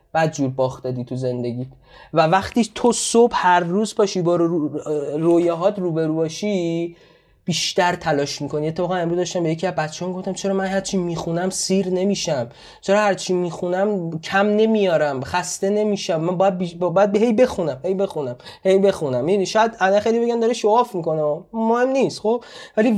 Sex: male